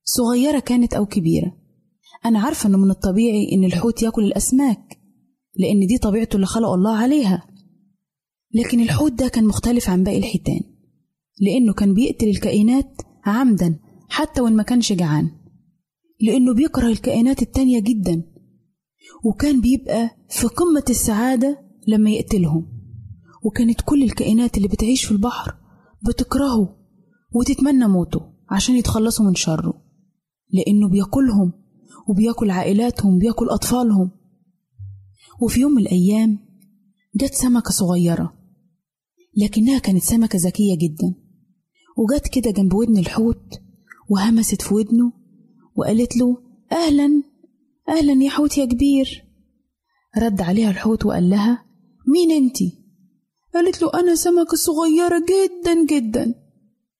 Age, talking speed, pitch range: 20-39, 120 wpm, 195-250 Hz